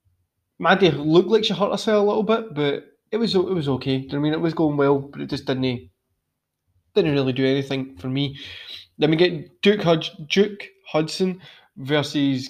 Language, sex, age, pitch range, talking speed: English, male, 20-39, 135-165 Hz, 180 wpm